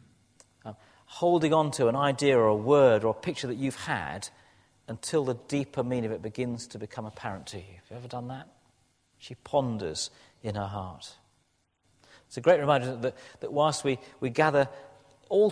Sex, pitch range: male, 110-140 Hz